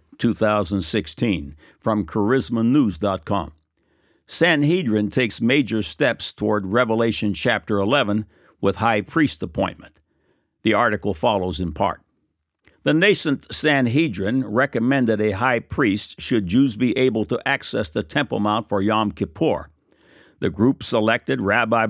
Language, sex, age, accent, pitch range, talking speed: English, male, 60-79, American, 105-140 Hz, 120 wpm